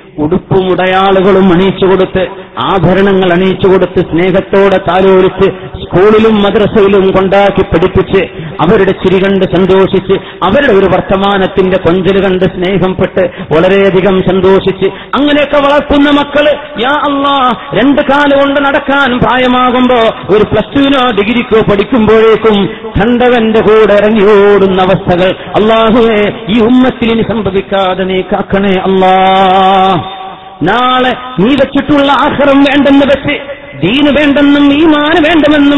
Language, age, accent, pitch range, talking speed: English, 40-59, Indian, 190-255 Hz, 90 wpm